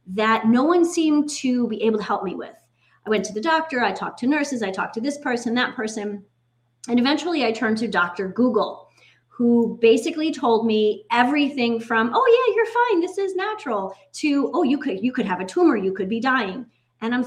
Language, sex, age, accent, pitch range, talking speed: English, female, 30-49, American, 205-280 Hz, 215 wpm